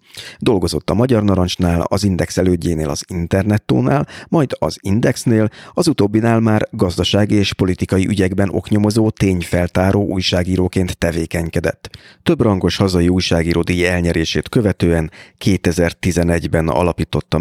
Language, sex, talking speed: Hungarian, male, 110 wpm